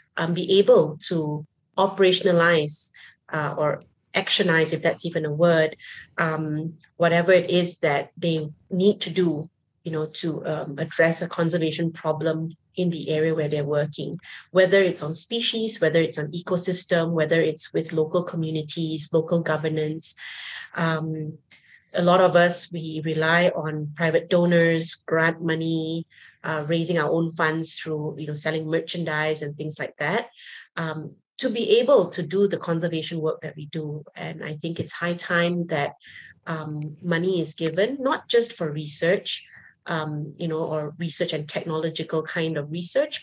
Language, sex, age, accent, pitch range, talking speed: English, female, 30-49, Malaysian, 155-175 Hz, 160 wpm